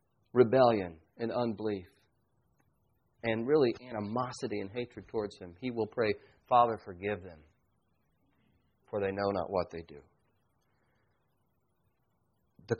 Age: 40-59